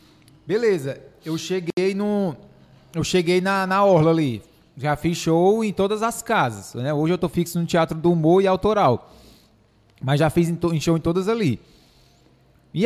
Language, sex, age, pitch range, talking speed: Portuguese, male, 20-39, 155-190 Hz, 180 wpm